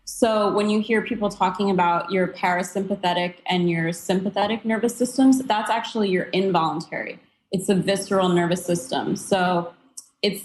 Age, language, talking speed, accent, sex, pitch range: 20-39, English, 145 wpm, American, female, 180-215 Hz